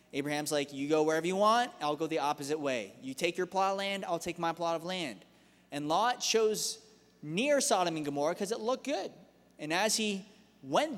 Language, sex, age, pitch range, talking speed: English, male, 20-39, 145-195 Hz, 215 wpm